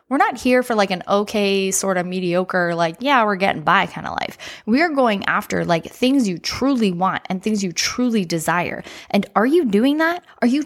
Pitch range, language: 175-235 Hz, English